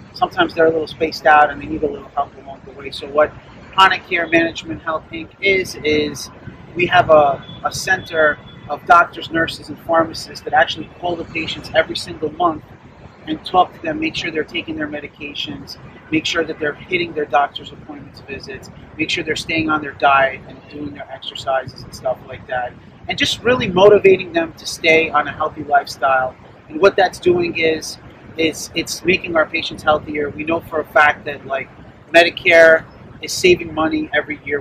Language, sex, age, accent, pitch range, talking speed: English, male, 30-49, American, 150-180 Hz, 190 wpm